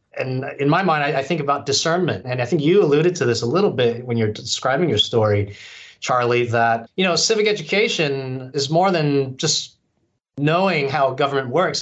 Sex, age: male, 30-49